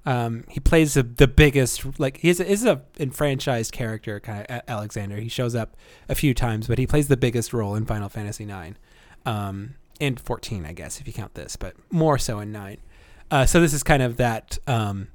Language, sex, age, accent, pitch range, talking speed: English, male, 30-49, American, 120-155 Hz, 215 wpm